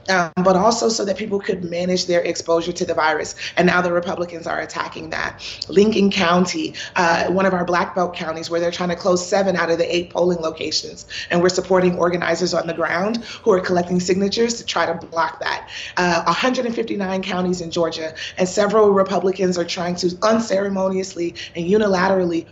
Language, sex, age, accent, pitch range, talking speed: English, female, 30-49, American, 170-200 Hz, 190 wpm